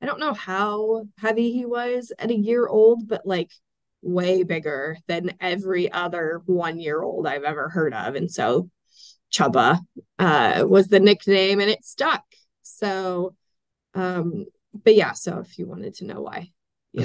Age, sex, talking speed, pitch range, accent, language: 20-39, female, 165 wpm, 185-225 Hz, American, English